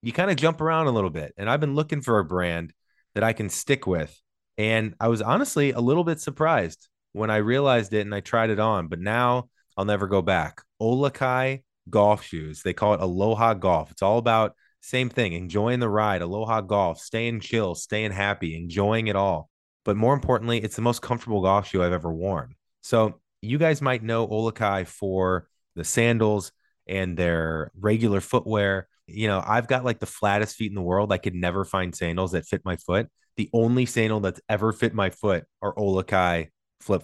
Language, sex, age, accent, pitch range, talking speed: English, male, 20-39, American, 95-120 Hz, 200 wpm